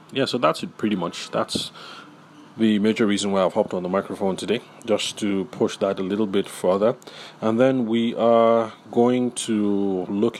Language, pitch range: English, 95-110 Hz